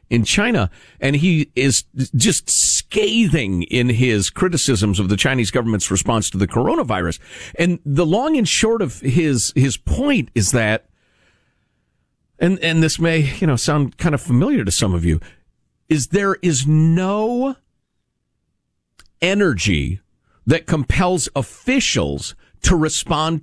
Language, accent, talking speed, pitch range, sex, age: English, American, 135 wpm, 105-160 Hz, male, 50-69